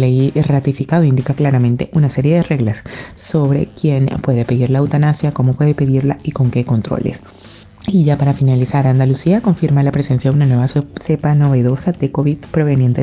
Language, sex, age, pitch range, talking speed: Spanish, female, 30-49, 130-160 Hz, 170 wpm